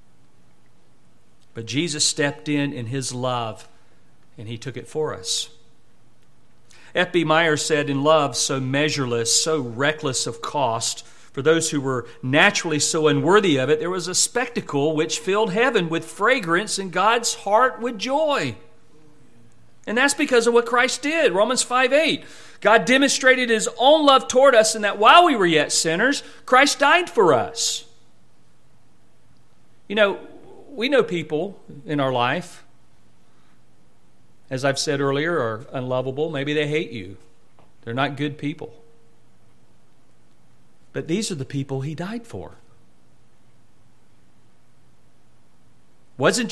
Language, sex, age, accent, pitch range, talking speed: English, male, 40-59, American, 125-200 Hz, 135 wpm